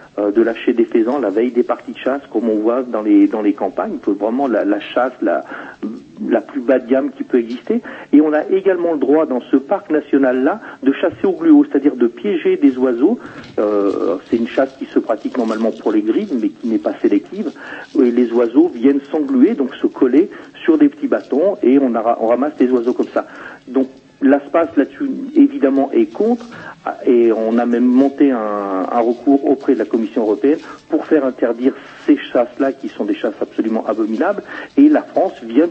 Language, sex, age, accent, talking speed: French, male, 50-69, French, 210 wpm